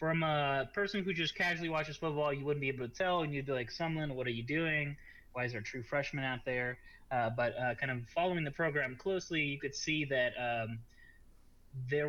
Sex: male